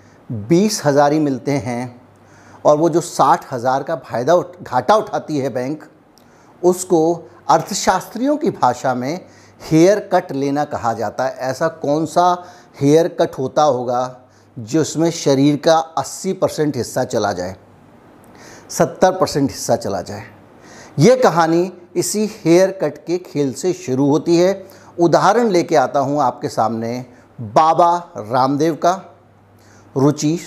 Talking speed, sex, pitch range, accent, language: 130 wpm, male, 130-170 Hz, native, Hindi